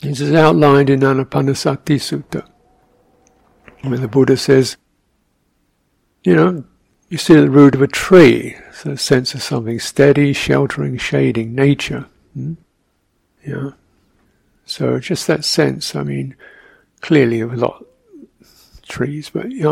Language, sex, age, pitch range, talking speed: English, male, 60-79, 115-145 Hz, 135 wpm